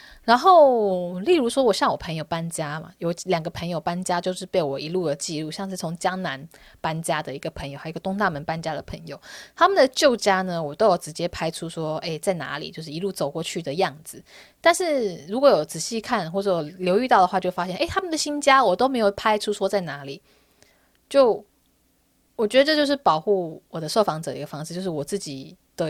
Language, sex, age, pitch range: Chinese, female, 20-39, 160-210 Hz